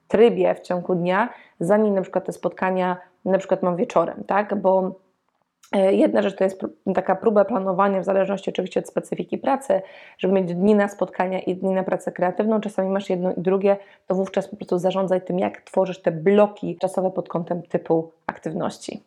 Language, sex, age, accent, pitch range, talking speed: Polish, female, 20-39, native, 185-210 Hz, 185 wpm